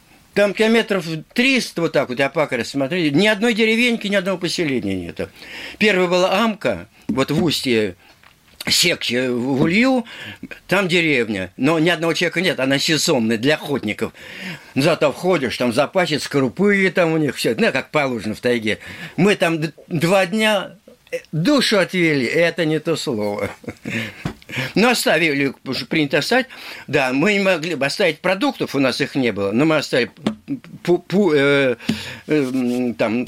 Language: Russian